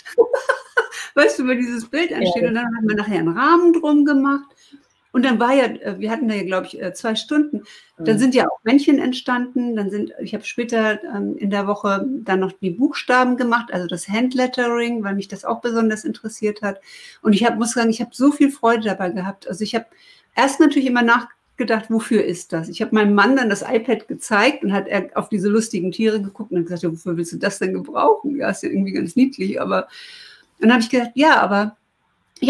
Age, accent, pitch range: 60-79, German, 200-270 Hz